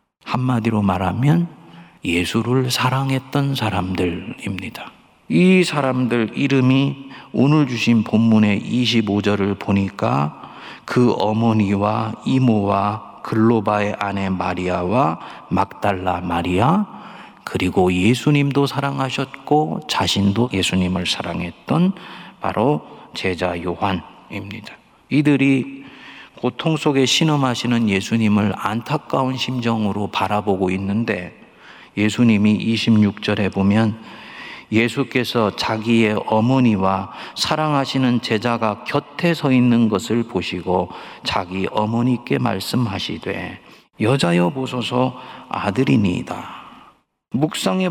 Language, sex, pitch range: Korean, male, 100-135 Hz